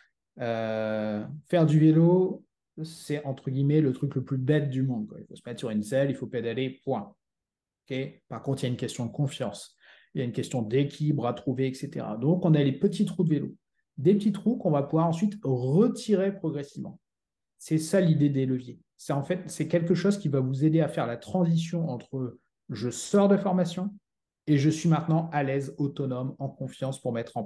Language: French